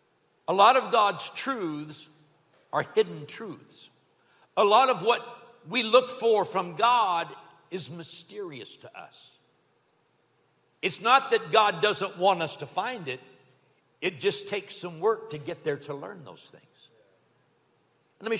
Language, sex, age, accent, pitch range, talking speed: English, male, 60-79, American, 155-235 Hz, 145 wpm